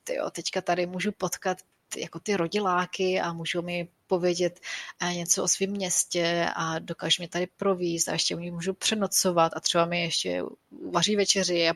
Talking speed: 165 wpm